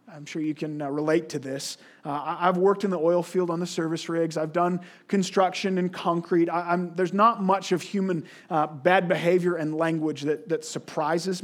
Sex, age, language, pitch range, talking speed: male, 30-49, English, 155-200 Hz, 185 wpm